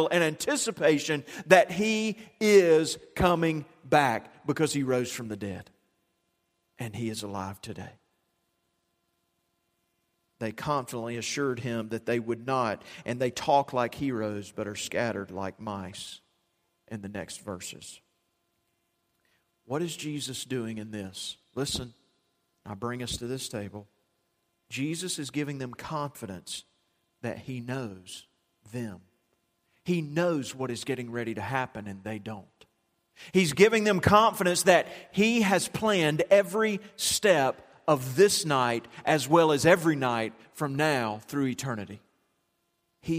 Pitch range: 110-155 Hz